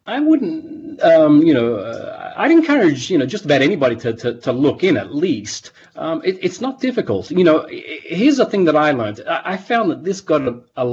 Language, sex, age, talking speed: English, male, 30-49, 225 wpm